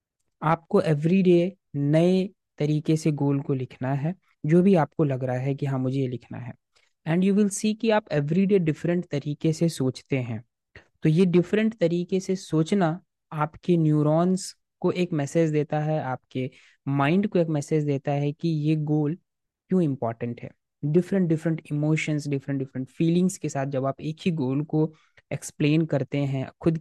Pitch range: 135-170 Hz